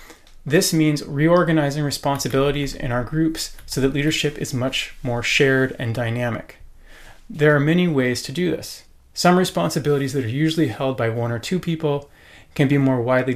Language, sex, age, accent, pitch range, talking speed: English, male, 30-49, American, 130-155 Hz, 170 wpm